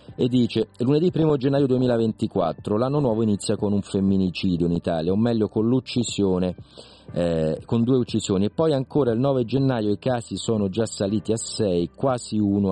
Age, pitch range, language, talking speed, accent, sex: 40-59, 90-125 Hz, Italian, 175 wpm, native, male